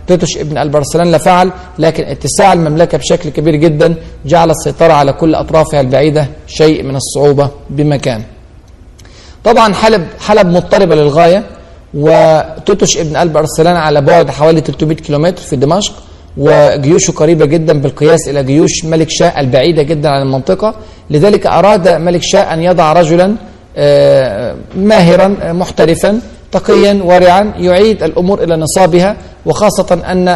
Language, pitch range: Arabic, 145-175 Hz